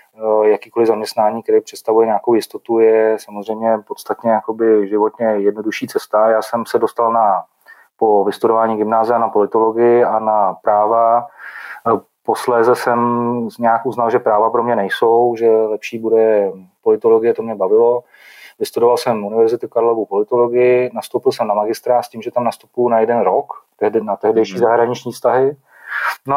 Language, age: Czech, 30-49